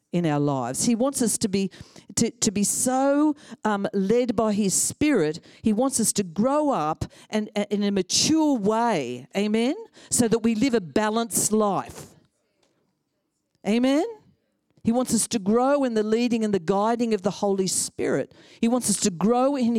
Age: 50-69